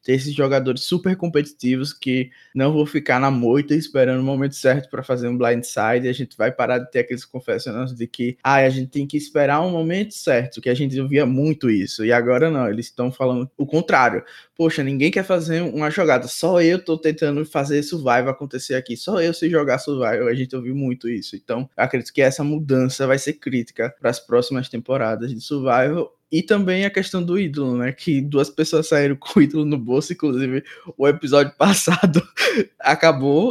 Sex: male